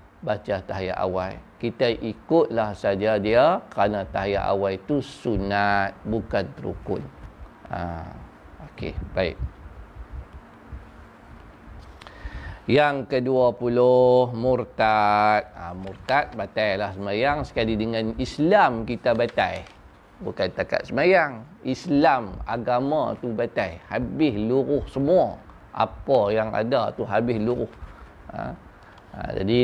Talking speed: 100 wpm